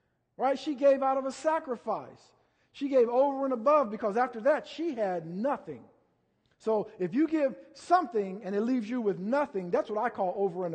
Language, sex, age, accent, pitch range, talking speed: English, male, 50-69, American, 180-230 Hz, 195 wpm